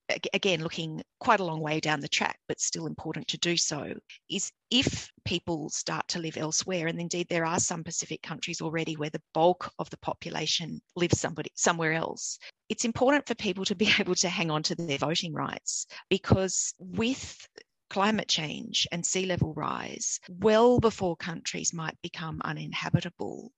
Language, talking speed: English, 170 wpm